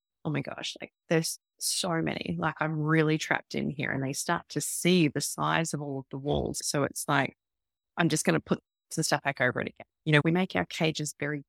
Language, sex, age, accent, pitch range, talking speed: English, female, 20-39, Australian, 150-175 Hz, 240 wpm